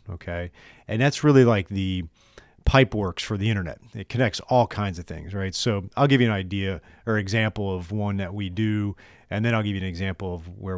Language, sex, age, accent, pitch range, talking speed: English, male, 40-59, American, 95-115 Hz, 225 wpm